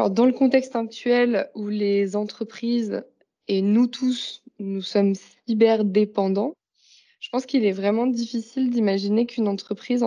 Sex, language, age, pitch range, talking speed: female, French, 20-39, 200-245 Hz, 135 wpm